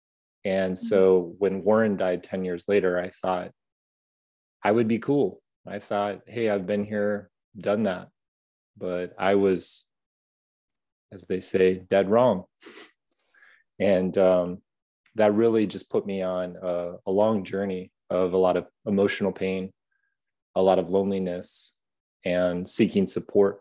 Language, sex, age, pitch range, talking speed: English, male, 30-49, 90-105 Hz, 140 wpm